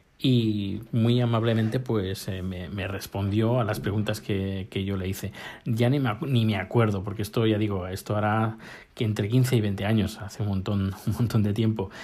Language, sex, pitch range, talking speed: Spanish, male, 105-125 Hz, 205 wpm